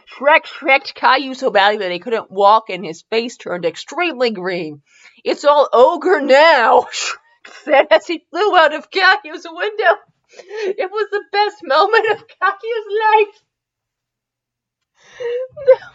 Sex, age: female, 30-49